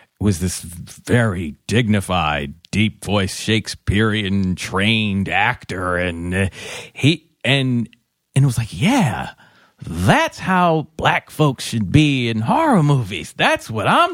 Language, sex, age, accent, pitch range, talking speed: English, male, 40-59, American, 95-115 Hz, 125 wpm